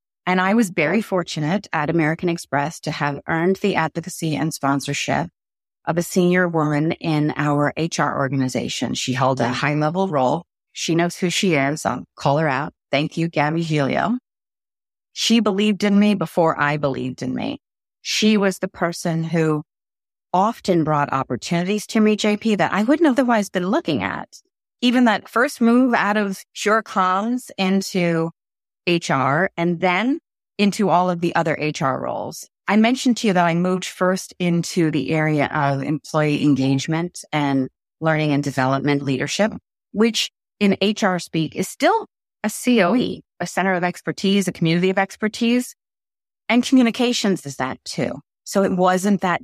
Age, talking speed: 30-49, 160 wpm